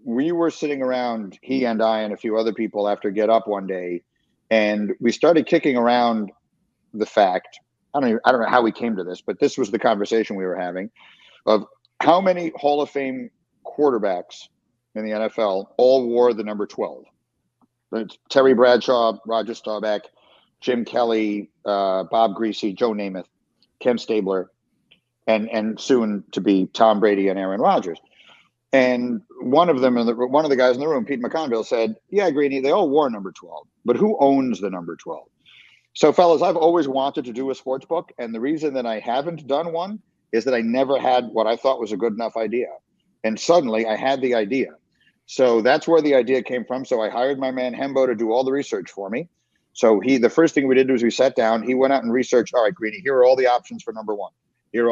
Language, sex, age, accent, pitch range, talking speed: English, male, 50-69, American, 110-135 Hz, 215 wpm